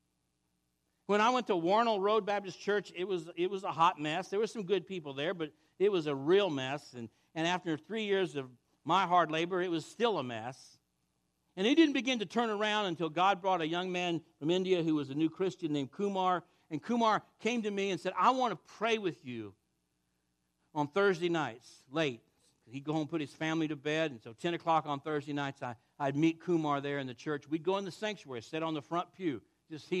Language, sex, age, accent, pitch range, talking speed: English, male, 60-79, American, 135-200 Hz, 230 wpm